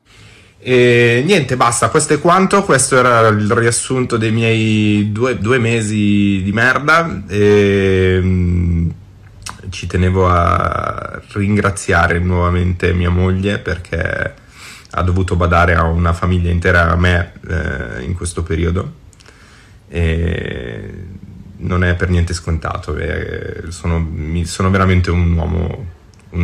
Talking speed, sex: 120 wpm, male